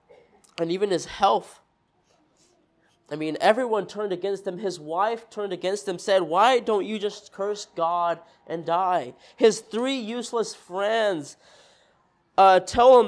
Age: 20-39